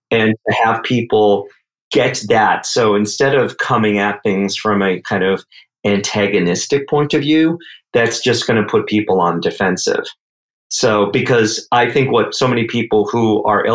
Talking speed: 165 wpm